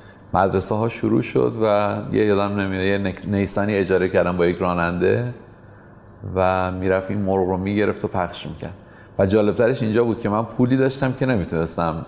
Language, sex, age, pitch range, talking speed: Persian, male, 40-59, 95-115 Hz, 170 wpm